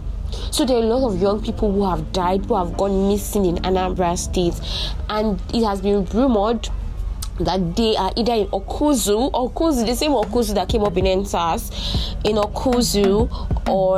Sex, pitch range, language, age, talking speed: female, 180-220 Hz, English, 20-39, 175 wpm